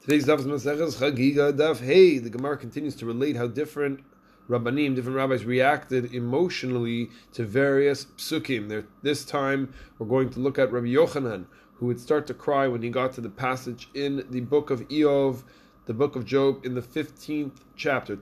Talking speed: 175 wpm